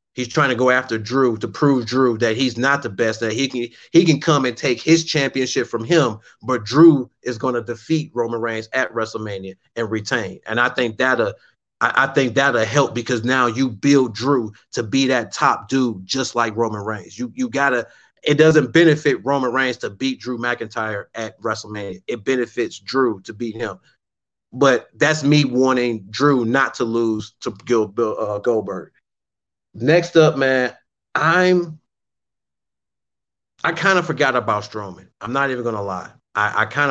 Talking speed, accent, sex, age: 180 wpm, American, male, 30-49